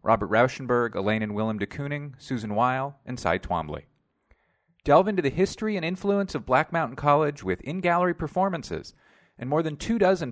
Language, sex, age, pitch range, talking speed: English, male, 40-59, 115-160 Hz, 175 wpm